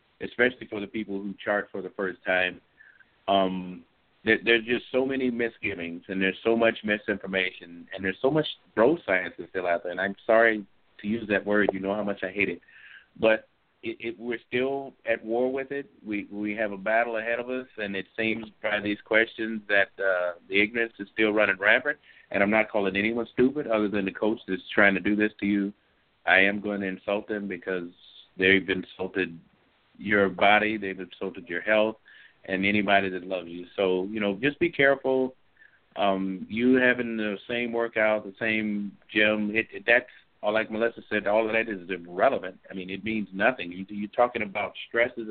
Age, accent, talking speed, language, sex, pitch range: 50-69, American, 200 wpm, English, male, 95-115 Hz